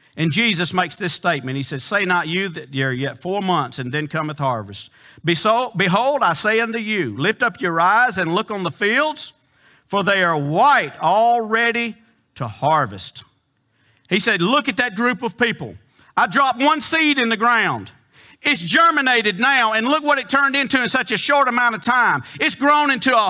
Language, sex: English, male